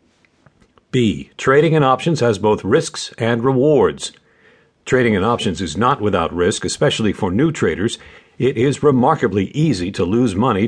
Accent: American